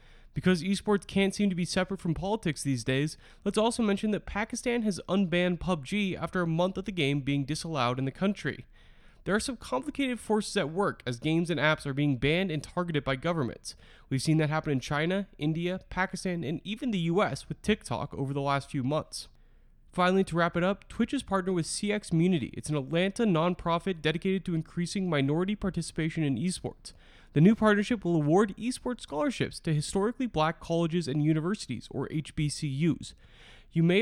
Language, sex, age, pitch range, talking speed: English, male, 20-39, 155-200 Hz, 185 wpm